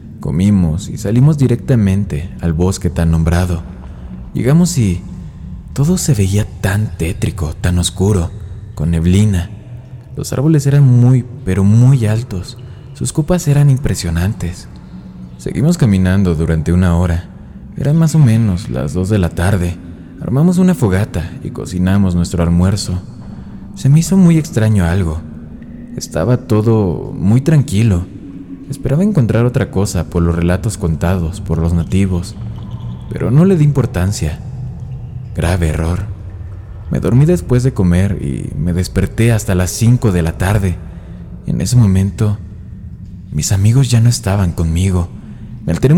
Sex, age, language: male, 20-39, Spanish